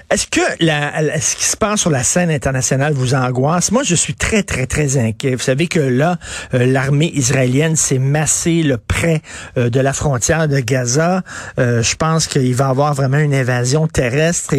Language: French